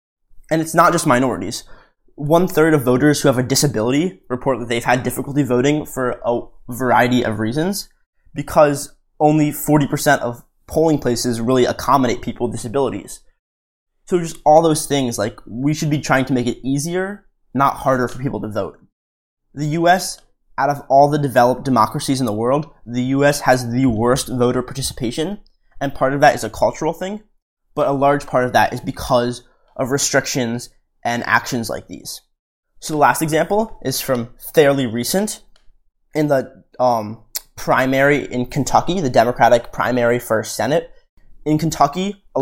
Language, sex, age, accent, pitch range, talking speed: English, male, 20-39, American, 120-150 Hz, 165 wpm